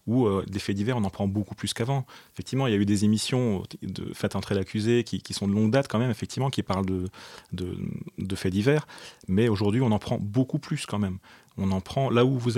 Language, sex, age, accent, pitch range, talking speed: French, male, 30-49, French, 105-130 Hz, 265 wpm